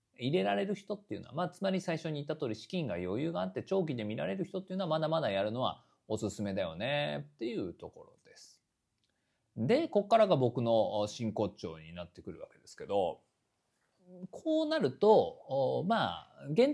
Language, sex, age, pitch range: Japanese, male, 40-59, 125-195 Hz